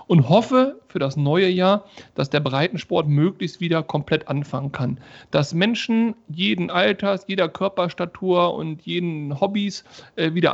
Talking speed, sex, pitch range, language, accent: 135 wpm, male, 145-190 Hz, German, German